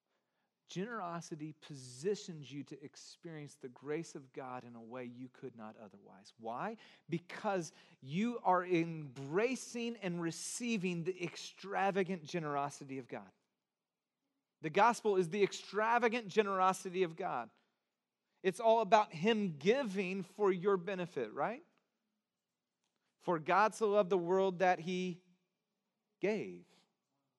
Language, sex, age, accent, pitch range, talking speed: English, male, 40-59, American, 165-215 Hz, 120 wpm